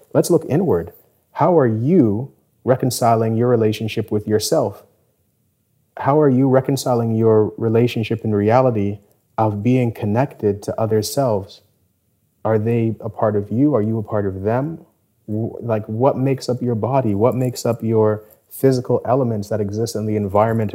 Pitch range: 105-125 Hz